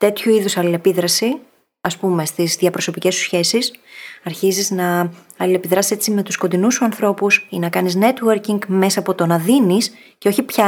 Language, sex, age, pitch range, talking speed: Greek, female, 20-39, 175-235 Hz, 170 wpm